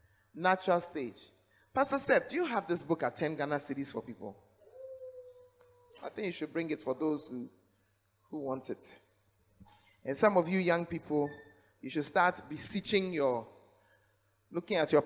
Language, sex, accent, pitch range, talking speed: English, male, Nigerian, 110-180 Hz, 165 wpm